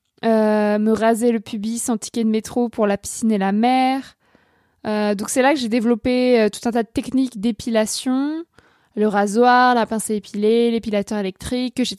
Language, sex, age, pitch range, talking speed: French, female, 20-39, 215-250 Hz, 195 wpm